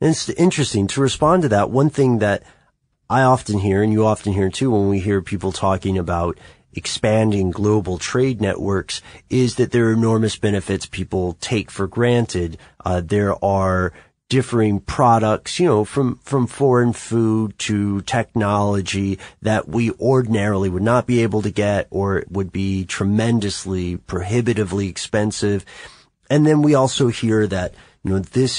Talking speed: 160 wpm